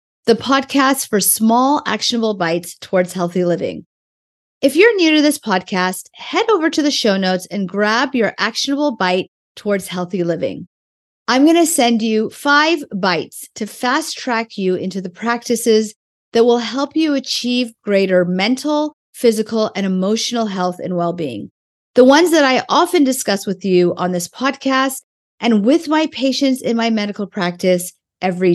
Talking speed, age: 160 wpm, 40-59